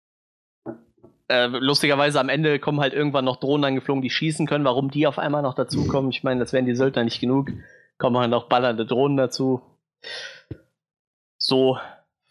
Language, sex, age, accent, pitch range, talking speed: German, male, 20-39, German, 120-140 Hz, 165 wpm